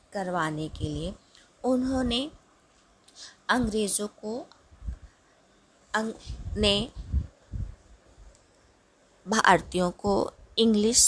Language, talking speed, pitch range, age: Hindi, 60 wpm, 195-250 Hz, 20-39